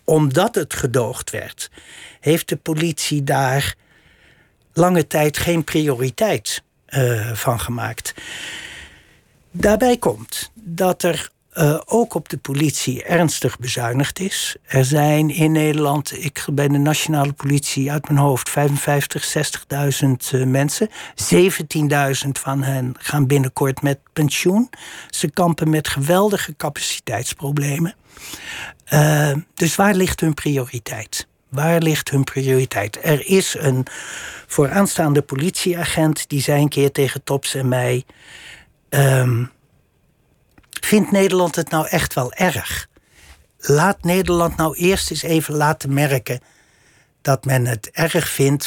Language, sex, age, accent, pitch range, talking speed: Dutch, male, 60-79, Dutch, 130-165 Hz, 120 wpm